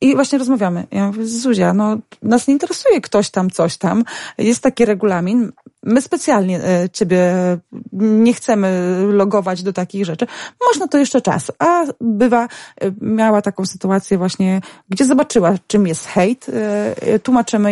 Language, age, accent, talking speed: Polish, 20-39, native, 140 wpm